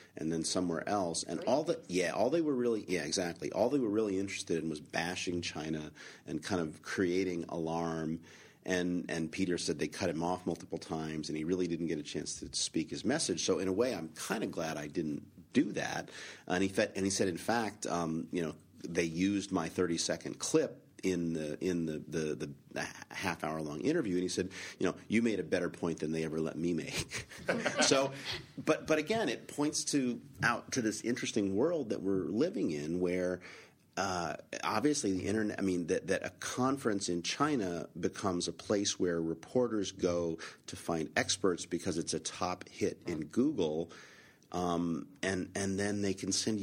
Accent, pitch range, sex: American, 85-100 Hz, male